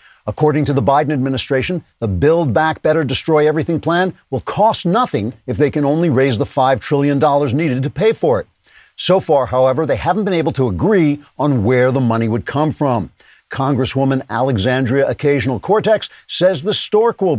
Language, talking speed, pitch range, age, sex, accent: English, 180 wpm, 125-160 Hz, 50-69, male, American